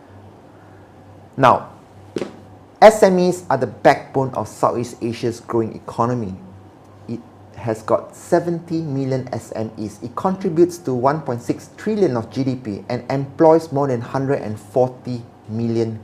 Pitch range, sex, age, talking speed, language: 100-140 Hz, male, 30-49, 110 wpm, Malay